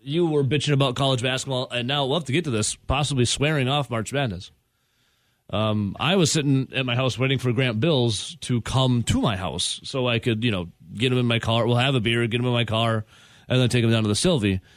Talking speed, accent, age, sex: 250 wpm, American, 30-49, male